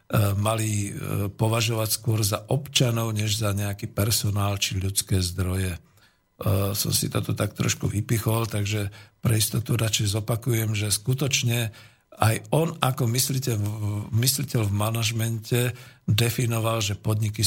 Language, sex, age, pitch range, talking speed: Slovak, male, 50-69, 105-125 Hz, 115 wpm